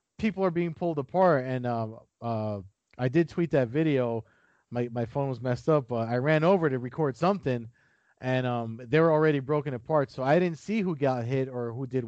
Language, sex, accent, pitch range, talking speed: English, male, American, 120-150 Hz, 215 wpm